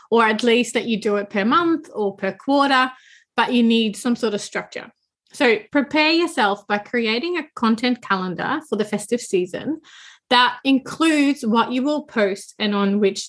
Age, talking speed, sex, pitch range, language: 20-39, 180 wpm, female, 215-270 Hz, English